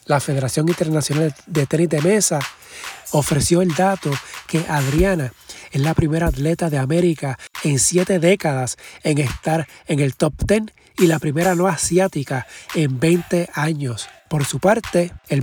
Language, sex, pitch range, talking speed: Spanish, male, 145-175 Hz, 150 wpm